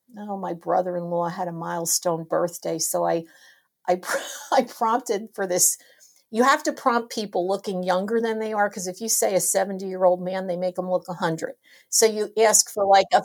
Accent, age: American, 50-69